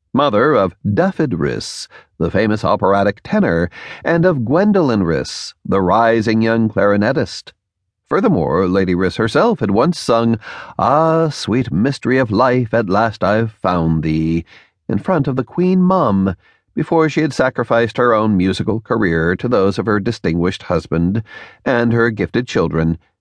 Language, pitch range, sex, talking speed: English, 90-130 Hz, male, 145 wpm